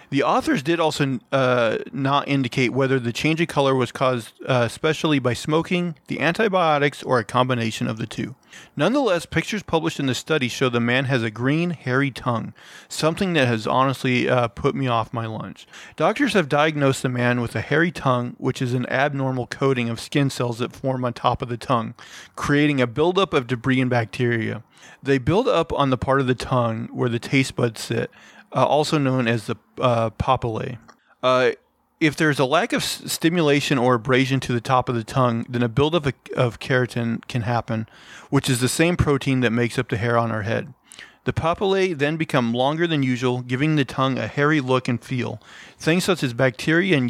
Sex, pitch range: male, 120-145 Hz